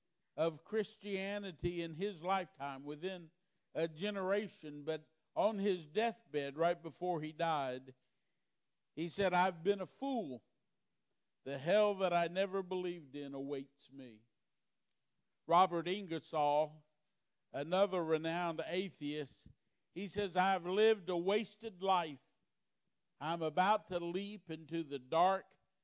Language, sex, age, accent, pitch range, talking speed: English, male, 50-69, American, 150-195 Hz, 115 wpm